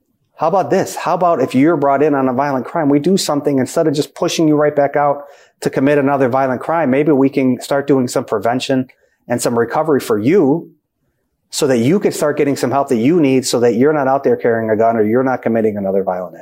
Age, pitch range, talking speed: 30-49, 115-145 Hz, 245 wpm